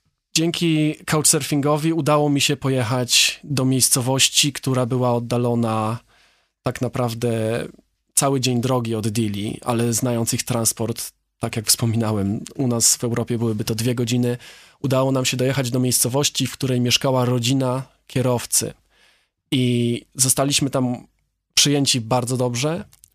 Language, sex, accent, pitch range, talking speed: Polish, male, native, 120-145 Hz, 130 wpm